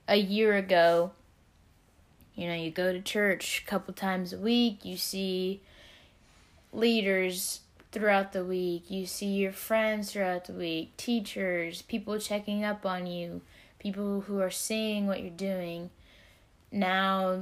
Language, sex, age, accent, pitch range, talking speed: English, female, 10-29, American, 170-200 Hz, 140 wpm